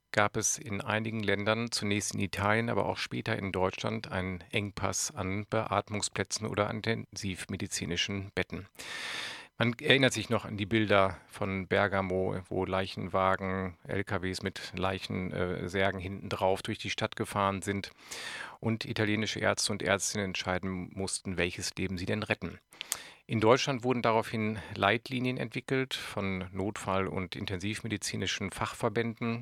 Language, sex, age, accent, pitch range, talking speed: German, male, 50-69, German, 95-110 Hz, 130 wpm